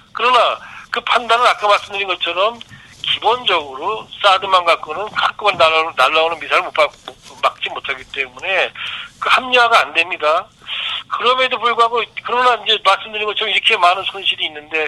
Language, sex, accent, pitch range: Korean, male, native, 170-215 Hz